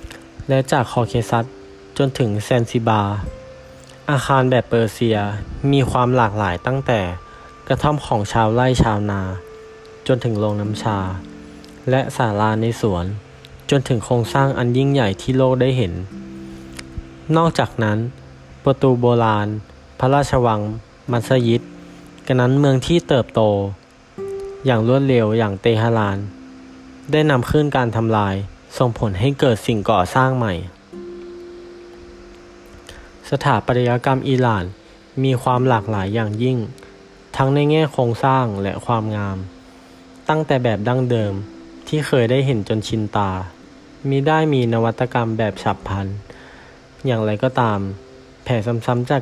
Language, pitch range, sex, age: Thai, 100-130 Hz, male, 20-39